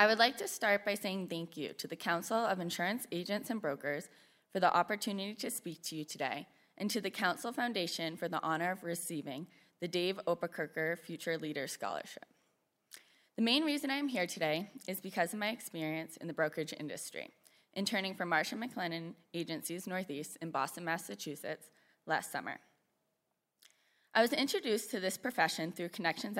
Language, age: English, 20-39